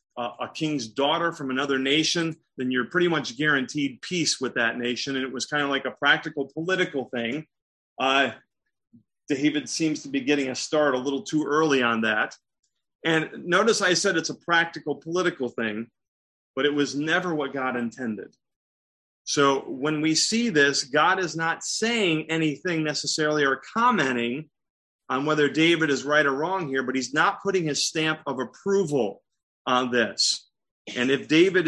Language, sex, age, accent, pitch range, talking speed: English, male, 30-49, American, 130-165 Hz, 170 wpm